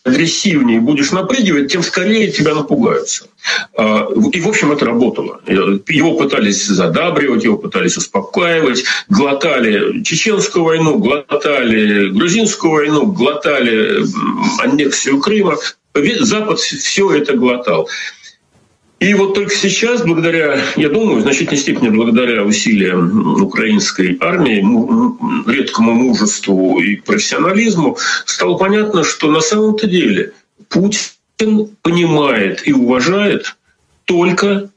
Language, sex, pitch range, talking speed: Ukrainian, male, 150-215 Hz, 105 wpm